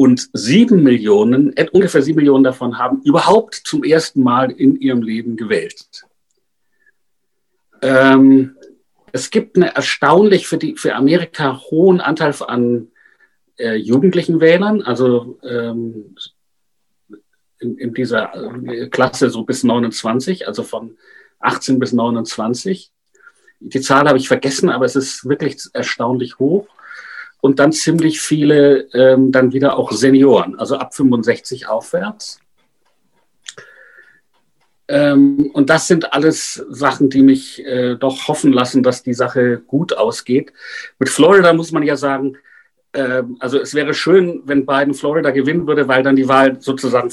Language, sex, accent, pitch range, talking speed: German, male, German, 130-170 Hz, 140 wpm